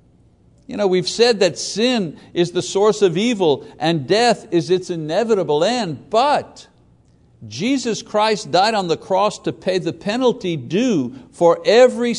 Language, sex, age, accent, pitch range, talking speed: English, male, 60-79, American, 165-225 Hz, 155 wpm